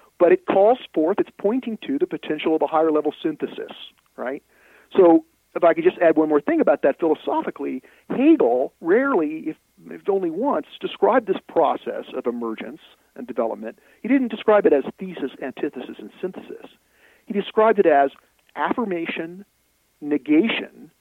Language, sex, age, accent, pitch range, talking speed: English, male, 50-69, American, 135-220 Hz, 155 wpm